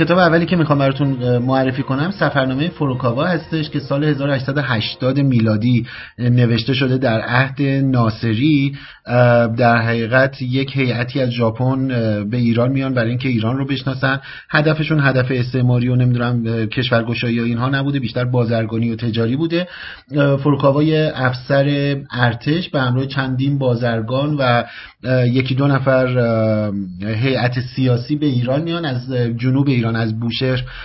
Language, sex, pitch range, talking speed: Persian, male, 120-145 Hz, 130 wpm